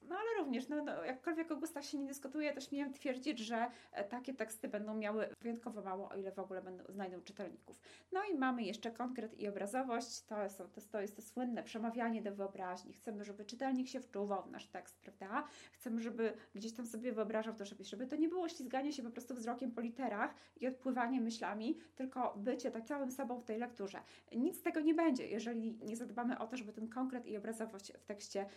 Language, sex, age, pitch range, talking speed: Polish, female, 20-39, 210-275 Hz, 210 wpm